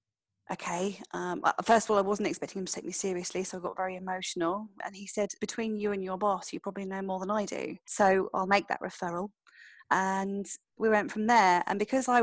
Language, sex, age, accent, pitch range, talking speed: English, female, 30-49, British, 175-200 Hz, 225 wpm